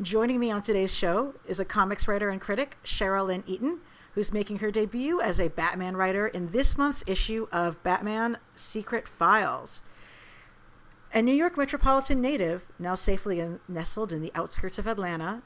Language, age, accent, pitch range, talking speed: English, 50-69, American, 170-225 Hz, 165 wpm